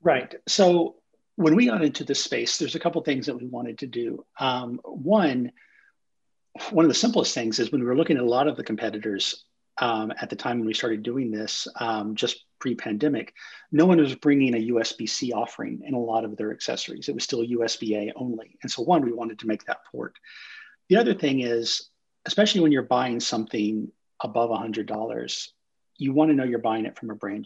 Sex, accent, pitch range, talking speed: male, American, 110-140 Hz, 215 wpm